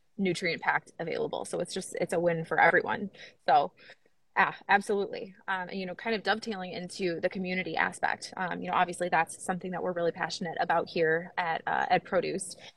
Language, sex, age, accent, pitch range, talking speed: English, female, 20-39, American, 175-205 Hz, 190 wpm